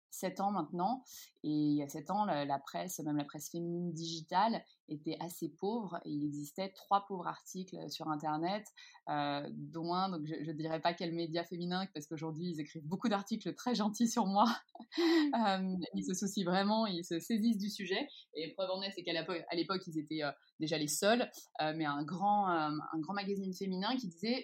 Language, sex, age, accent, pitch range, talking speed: French, female, 20-39, French, 165-205 Hz, 205 wpm